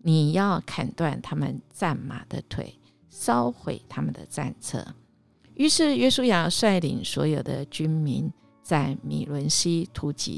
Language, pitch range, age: Chinese, 140-190 Hz, 50-69